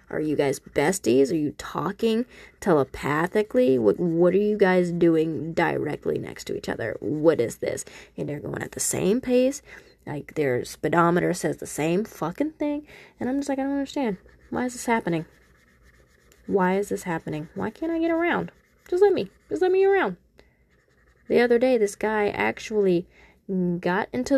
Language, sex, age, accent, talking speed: English, female, 20-39, American, 180 wpm